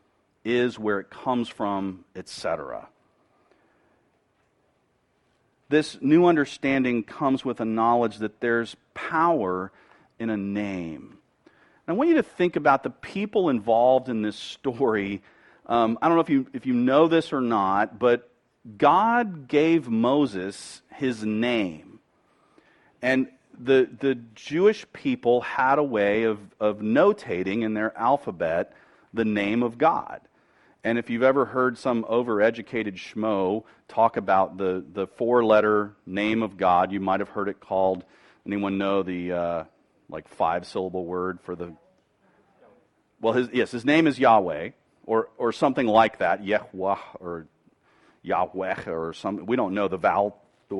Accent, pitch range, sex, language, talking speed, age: American, 100-130 Hz, male, English, 145 wpm, 40-59